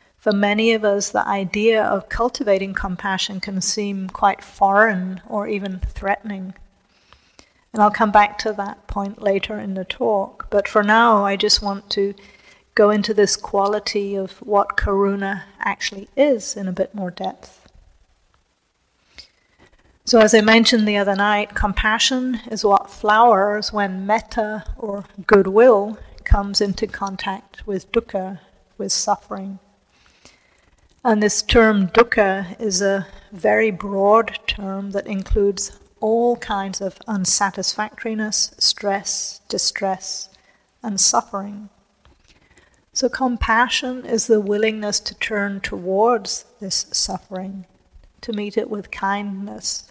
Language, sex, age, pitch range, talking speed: English, female, 40-59, 195-215 Hz, 125 wpm